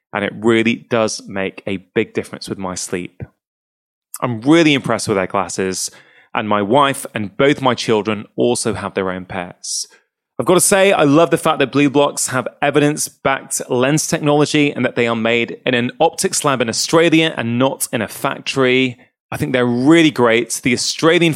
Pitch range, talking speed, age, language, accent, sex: 115-150 Hz, 190 wpm, 20-39, English, British, male